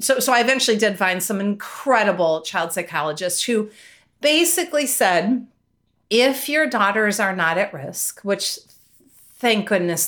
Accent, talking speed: American, 135 wpm